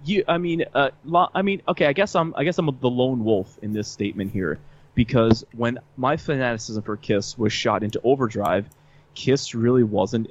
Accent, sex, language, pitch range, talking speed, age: American, male, English, 110-140 Hz, 190 wpm, 20-39